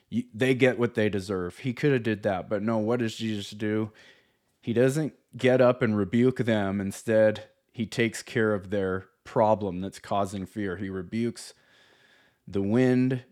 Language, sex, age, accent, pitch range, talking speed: English, male, 30-49, American, 105-130 Hz, 165 wpm